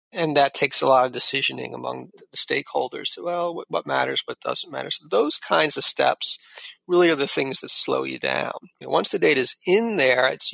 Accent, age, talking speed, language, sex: American, 40-59, 215 wpm, English, male